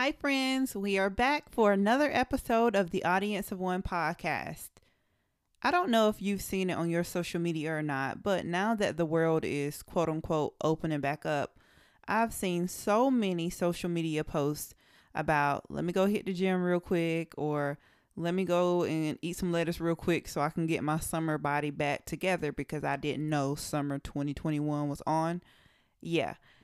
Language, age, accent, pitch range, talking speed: English, 20-39, American, 160-210 Hz, 185 wpm